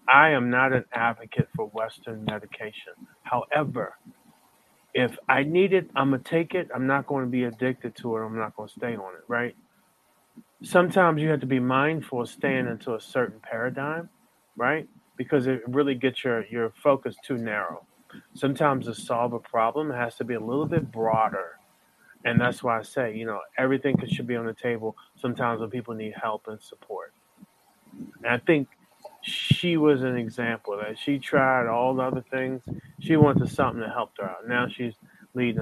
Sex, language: male, English